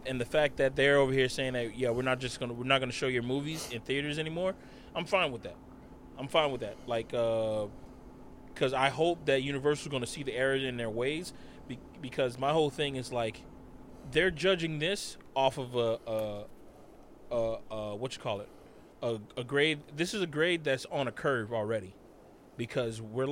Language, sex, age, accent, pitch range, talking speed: English, male, 20-39, American, 120-155 Hz, 215 wpm